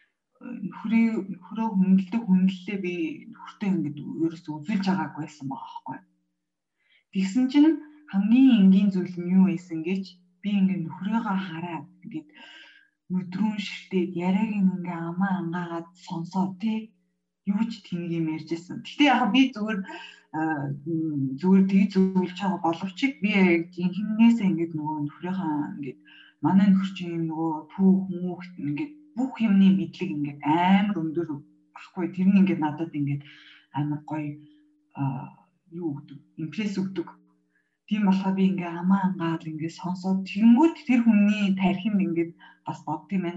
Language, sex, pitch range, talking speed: English, female, 160-200 Hz, 110 wpm